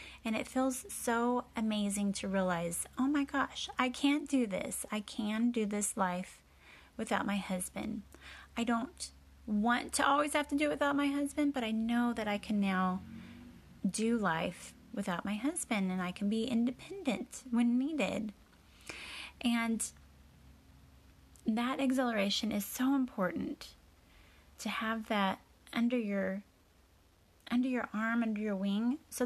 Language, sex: English, female